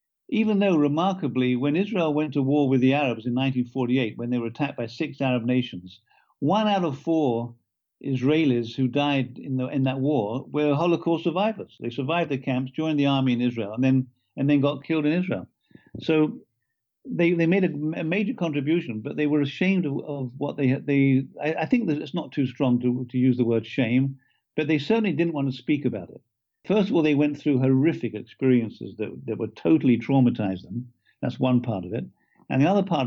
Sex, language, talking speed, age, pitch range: male, English, 210 wpm, 50-69, 125-150 Hz